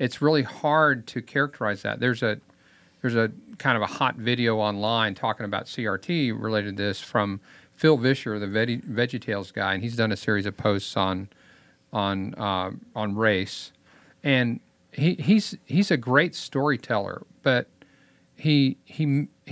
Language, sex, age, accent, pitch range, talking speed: English, male, 50-69, American, 110-155 Hz, 155 wpm